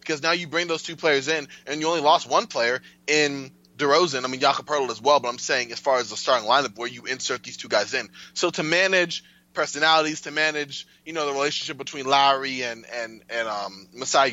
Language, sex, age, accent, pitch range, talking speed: English, male, 20-39, American, 125-155 Hz, 230 wpm